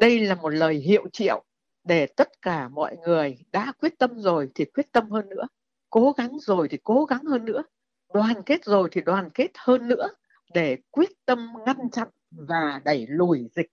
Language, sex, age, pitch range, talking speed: Vietnamese, female, 60-79, 175-255 Hz, 195 wpm